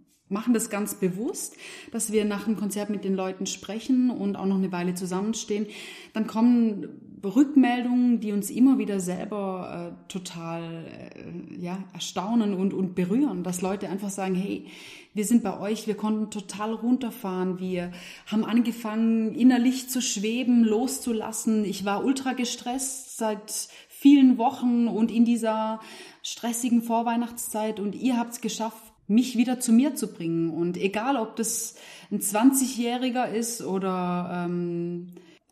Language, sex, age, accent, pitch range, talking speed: German, female, 30-49, German, 190-235 Hz, 145 wpm